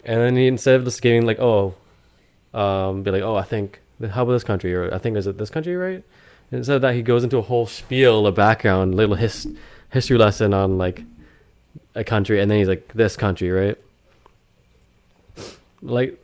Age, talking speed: 20-39, 205 wpm